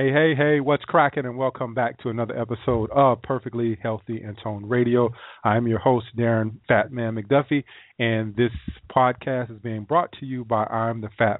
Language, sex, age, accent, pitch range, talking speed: English, male, 30-49, American, 110-125 Hz, 175 wpm